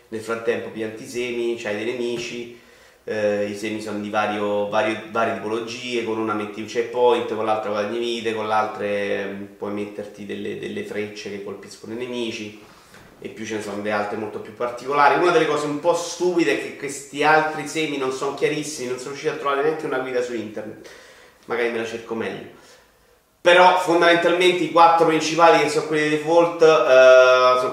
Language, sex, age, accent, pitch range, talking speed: Italian, male, 30-49, native, 115-155 Hz, 190 wpm